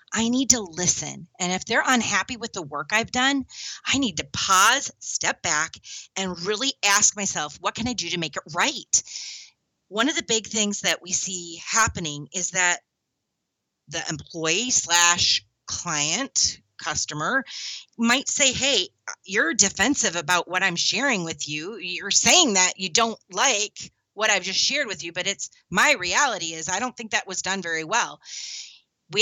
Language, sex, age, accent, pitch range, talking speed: English, female, 30-49, American, 175-245 Hz, 175 wpm